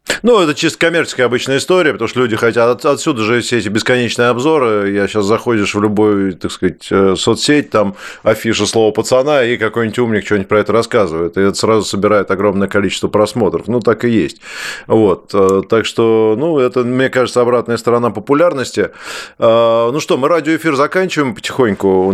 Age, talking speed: 20-39, 170 wpm